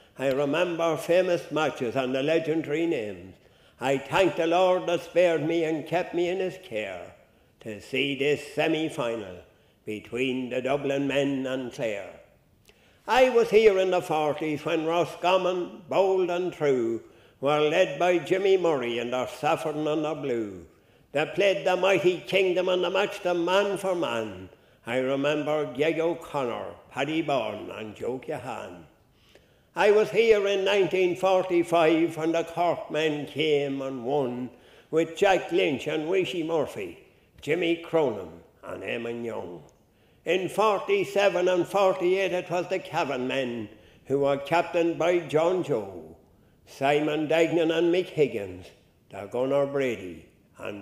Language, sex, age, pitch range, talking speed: English, male, 60-79, 140-180 Hz, 145 wpm